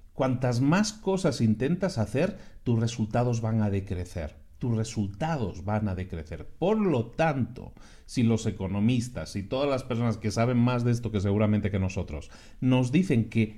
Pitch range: 105-155 Hz